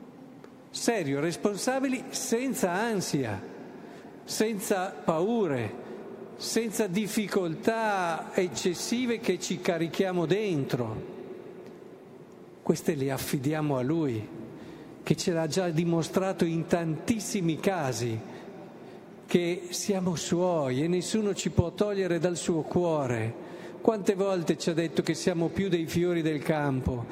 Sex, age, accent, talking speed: male, 50-69, native, 110 wpm